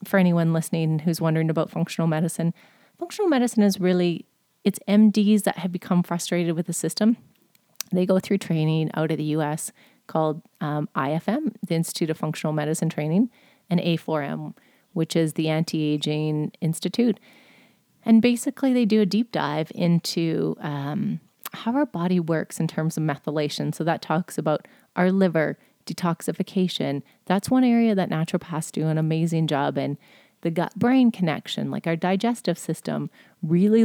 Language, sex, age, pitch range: English, female, 30-49, 160-205 Hz